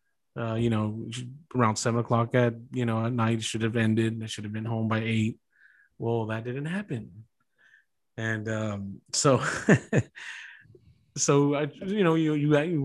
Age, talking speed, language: 30-49, 165 wpm, English